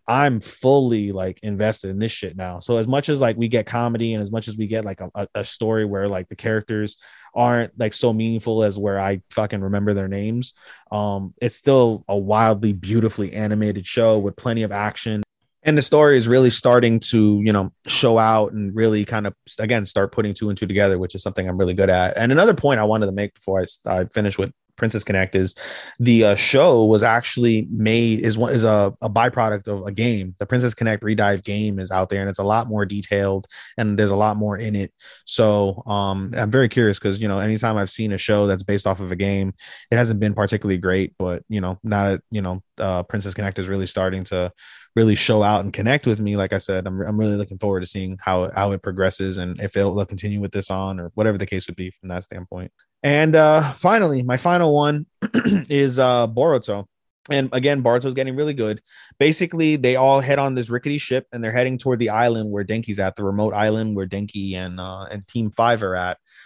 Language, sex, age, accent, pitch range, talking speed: English, male, 20-39, American, 100-115 Hz, 230 wpm